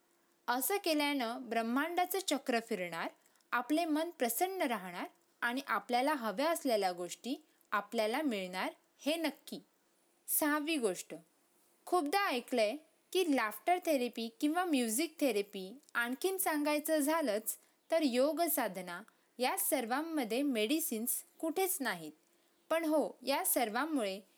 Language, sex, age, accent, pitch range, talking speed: Marathi, female, 20-39, native, 230-320 Hz, 105 wpm